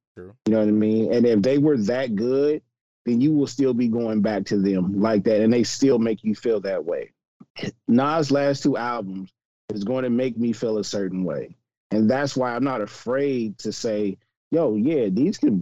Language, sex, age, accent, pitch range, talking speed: English, male, 30-49, American, 105-130 Hz, 210 wpm